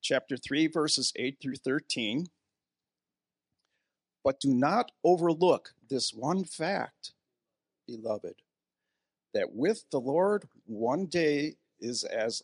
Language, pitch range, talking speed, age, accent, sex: English, 115-165 Hz, 105 wpm, 50-69, American, male